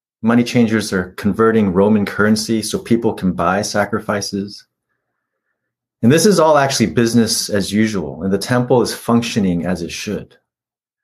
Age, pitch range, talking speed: 30-49, 100-120 Hz, 145 wpm